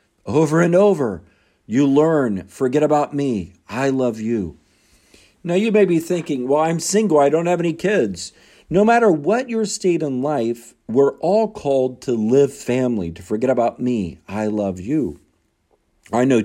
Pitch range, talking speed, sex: 125-185 Hz, 170 wpm, male